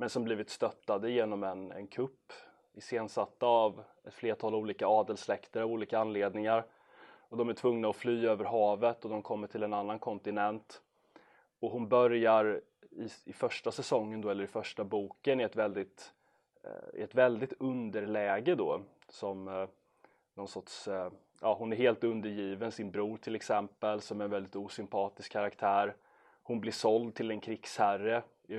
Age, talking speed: 20-39, 145 wpm